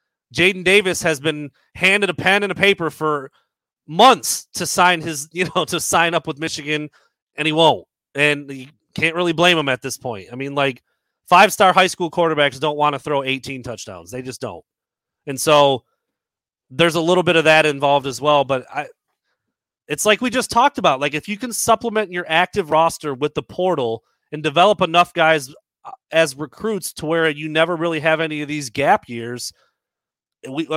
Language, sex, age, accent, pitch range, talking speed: English, male, 30-49, American, 140-175 Hz, 190 wpm